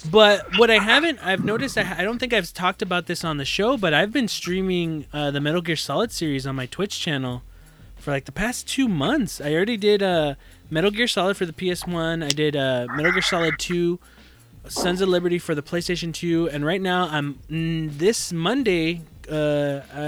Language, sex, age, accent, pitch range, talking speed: English, male, 20-39, American, 150-195 Hz, 200 wpm